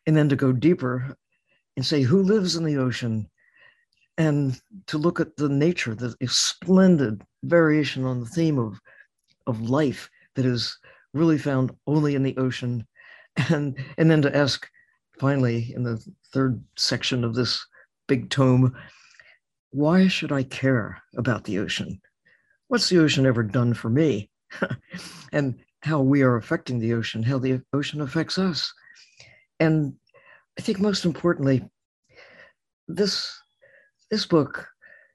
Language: English